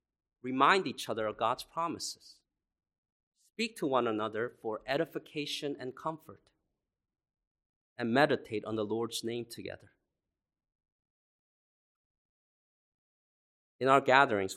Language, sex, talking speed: English, male, 100 wpm